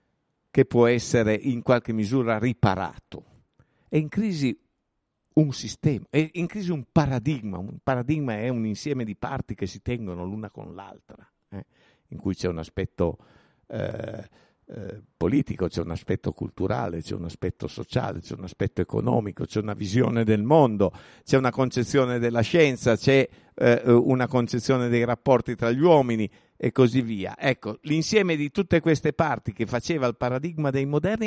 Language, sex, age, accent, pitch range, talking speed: Italian, male, 50-69, native, 115-150 Hz, 160 wpm